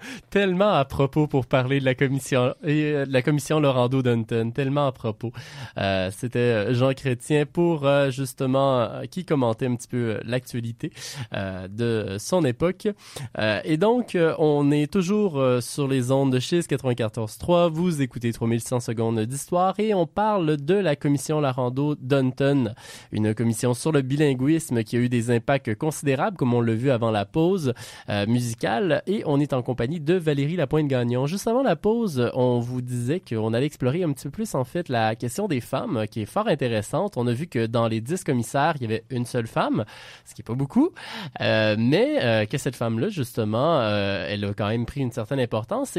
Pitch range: 115-150 Hz